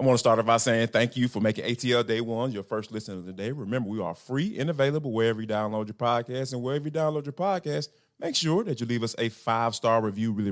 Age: 30-49